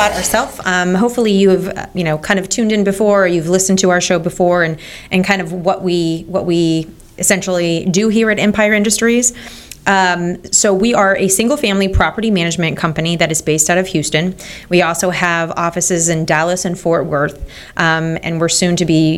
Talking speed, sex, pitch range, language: 200 wpm, female, 160-185 Hz, English